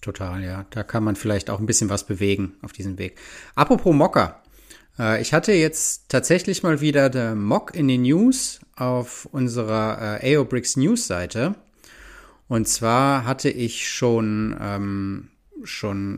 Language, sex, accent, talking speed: German, male, German, 140 wpm